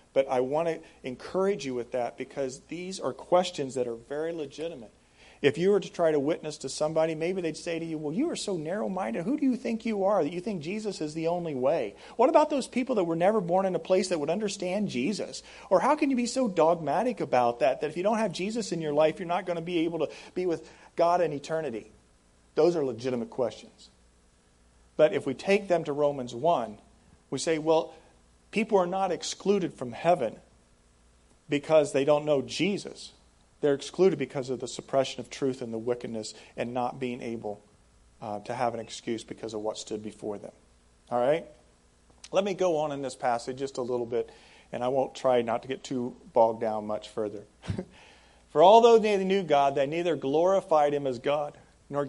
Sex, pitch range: male, 120-175 Hz